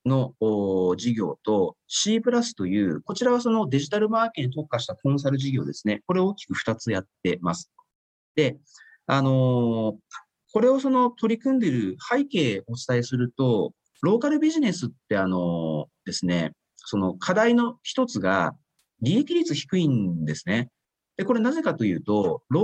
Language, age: Japanese, 40-59